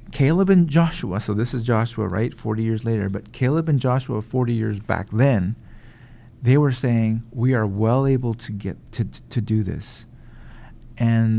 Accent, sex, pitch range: American, male, 110-135 Hz